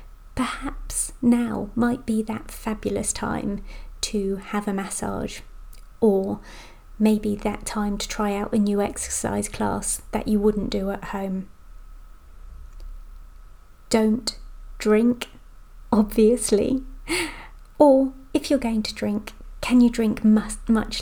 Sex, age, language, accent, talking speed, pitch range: female, 30-49, English, British, 115 wpm, 195-230 Hz